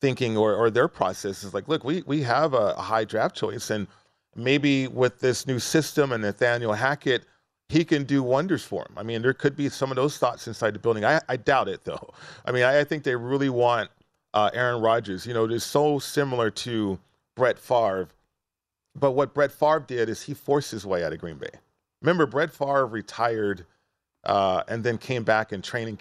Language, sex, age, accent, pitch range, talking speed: English, male, 40-59, American, 105-135 Hz, 215 wpm